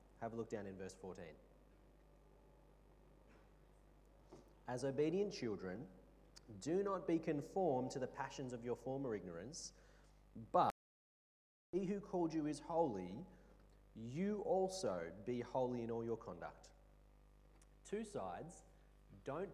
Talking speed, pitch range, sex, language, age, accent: 120 wpm, 125-175 Hz, male, English, 30-49, Australian